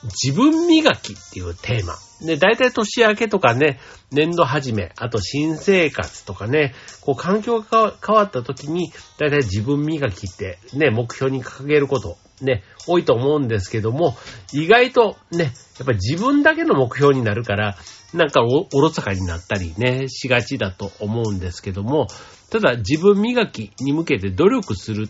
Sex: male